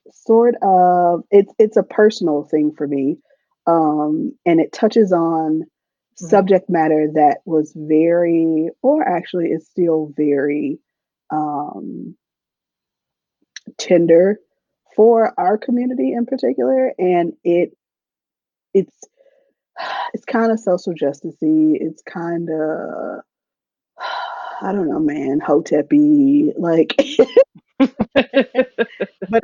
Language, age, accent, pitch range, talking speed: English, 20-39, American, 160-240 Hz, 100 wpm